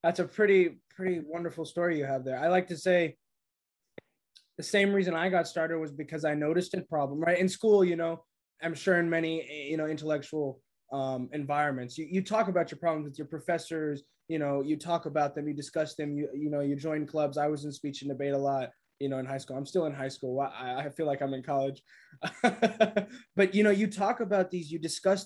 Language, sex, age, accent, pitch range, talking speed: English, male, 20-39, American, 145-180 Hz, 230 wpm